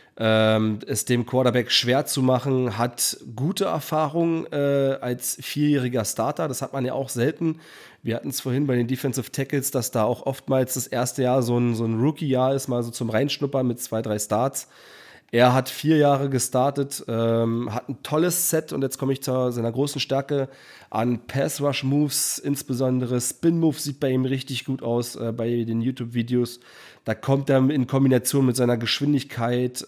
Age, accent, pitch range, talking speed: 30-49, German, 120-140 Hz, 175 wpm